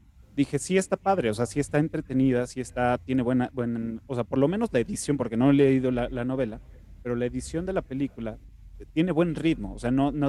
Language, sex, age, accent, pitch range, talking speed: Spanish, male, 30-49, Mexican, 115-145 Hz, 245 wpm